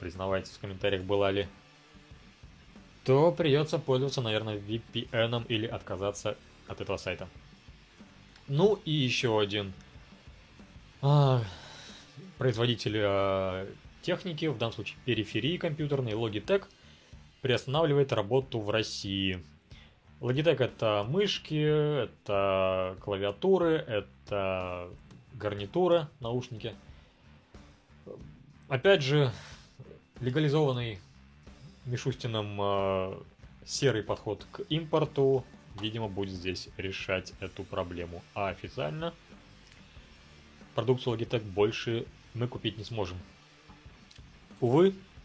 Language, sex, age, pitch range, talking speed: Russian, male, 20-39, 95-130 Hz, 85 wpm